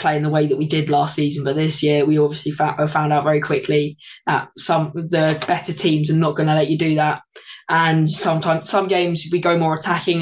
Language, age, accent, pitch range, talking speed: English, 20-39, British, 150-165 Hz, 240 wpm